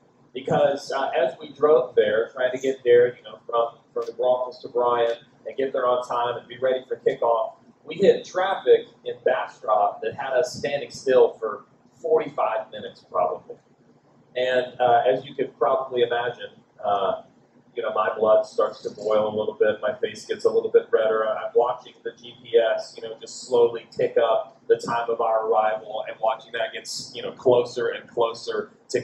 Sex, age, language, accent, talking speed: male, 40-59, English, American, 190 wpm